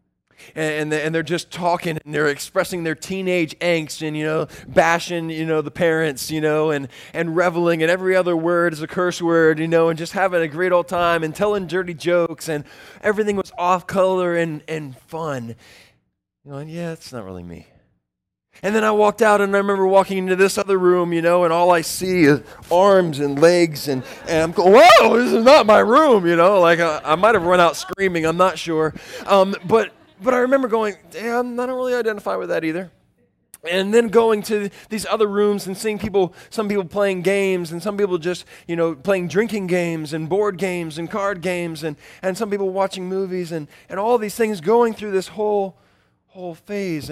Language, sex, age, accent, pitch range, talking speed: English, male, 20-39, American, 155-195 Hz, 215 wpm